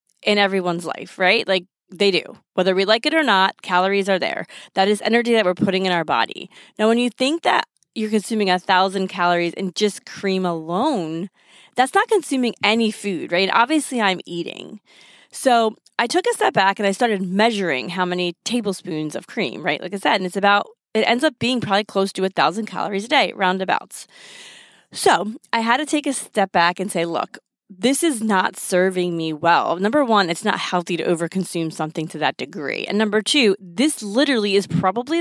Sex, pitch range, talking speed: female, 185-230 Hz, 200 wpm